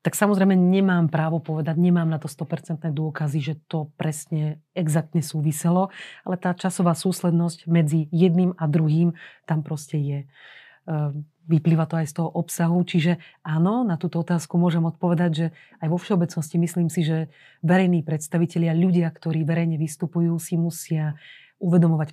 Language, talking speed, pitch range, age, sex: Slovak, 150 wpm, 155-175 Hz, 30-49, female